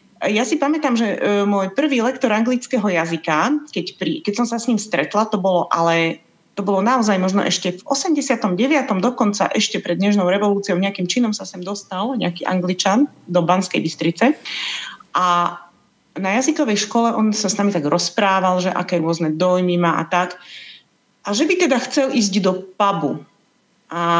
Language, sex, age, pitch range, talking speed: Slovak, female, 30-49, 180-235 Hz, 160 wpm